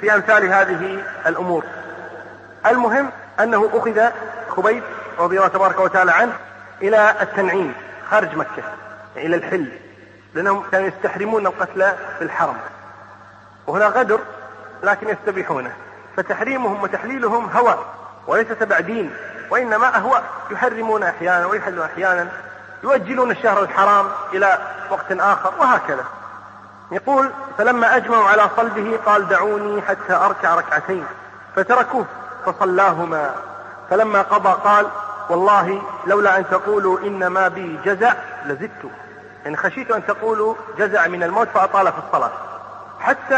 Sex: male